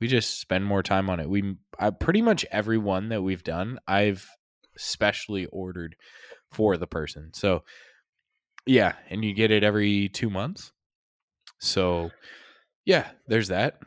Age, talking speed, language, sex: 20-39, 150 wpm, English, male